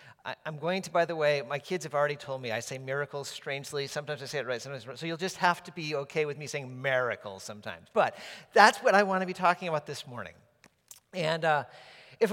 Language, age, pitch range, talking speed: English, 40-59, 145-195 Hz, 250 wpm